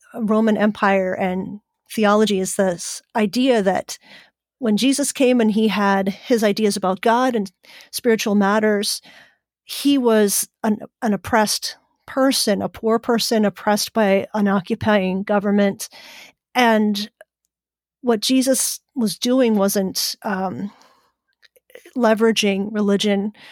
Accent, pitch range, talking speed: American, 205-235 Hz, 110 wpm